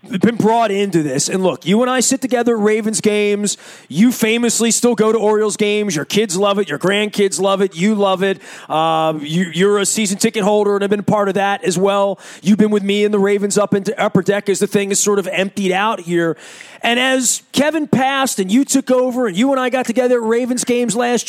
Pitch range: 195-235 Hz